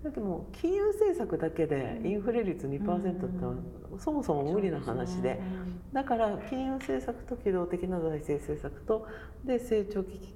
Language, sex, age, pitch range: Japanese, female, 50-69, 155-235 Hz